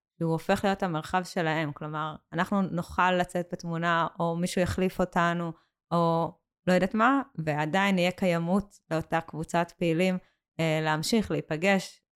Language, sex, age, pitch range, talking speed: Hebrew, female, 20-39, 165-195 Hz, 130 wpm